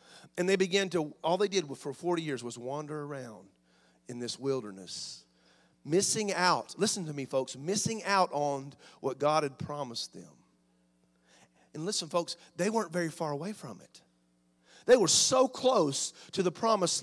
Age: 40-59